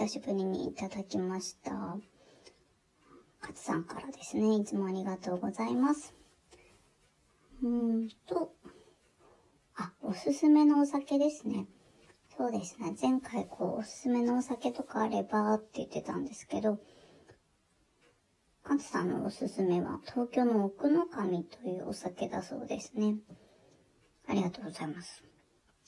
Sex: male